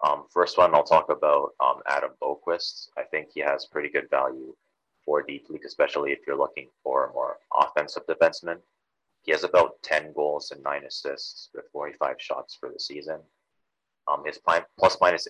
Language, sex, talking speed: English, male, 180 wpm